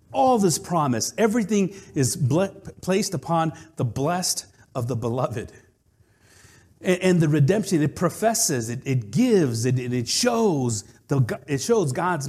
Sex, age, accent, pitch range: male, 50-69, American, 125-205 Hz